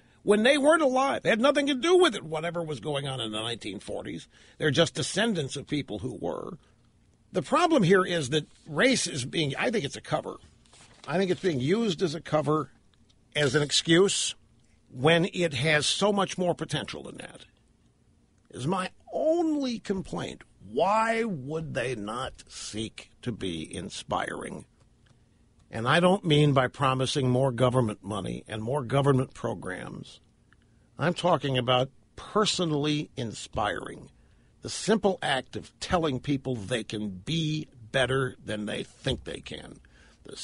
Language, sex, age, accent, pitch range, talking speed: English, male, 60-79, American, 125-180 Hz, 155 wpm